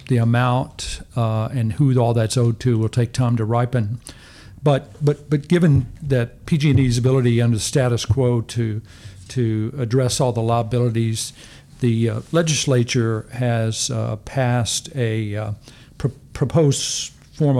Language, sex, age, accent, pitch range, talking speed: English, male, 50-69, American, 115-135 Hz, 140 wpm